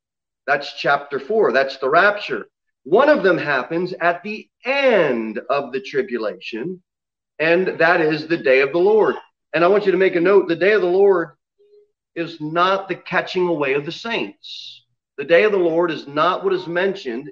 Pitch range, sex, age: 140-210 Hz, male, 40-59